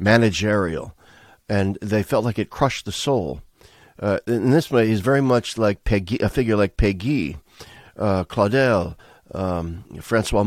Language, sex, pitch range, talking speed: English, male, 90-115 Hz, 150 wpm